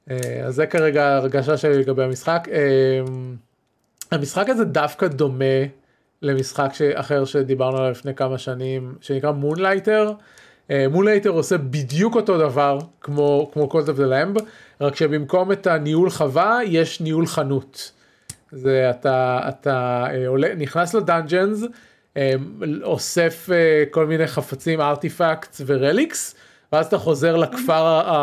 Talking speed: 130 wpm